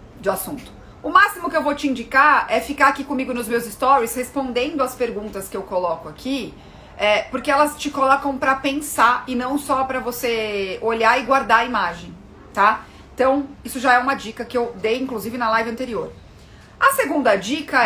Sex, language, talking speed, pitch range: female, Portuguese, 190 wpm, 220-280 Hz